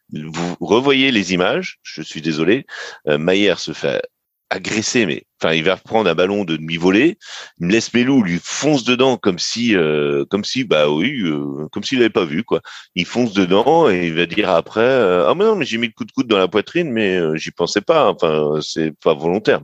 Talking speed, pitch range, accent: 235 wpm, 75-120 Hz, French